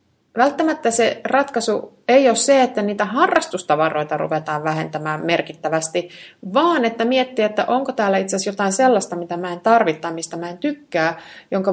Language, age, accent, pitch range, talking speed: Finnish, 30-49, native, 170-230 Hz, 160 wpm